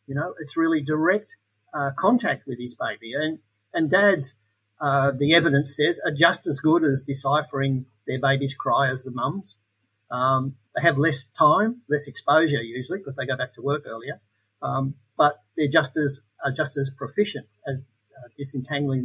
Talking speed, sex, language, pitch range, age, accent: 175 wpm, male, English, 130-155 Hz, 50-69, Australian